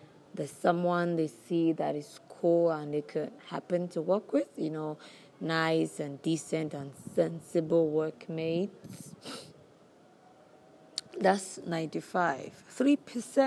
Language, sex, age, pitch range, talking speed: English, female, 20-39, 155-190 Hz, 105 wpm